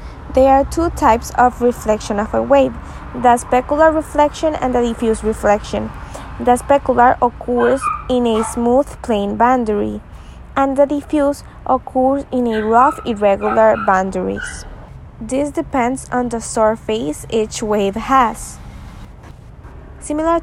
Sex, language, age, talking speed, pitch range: female, English, 20-39, 125 wpm, 225-275 Hz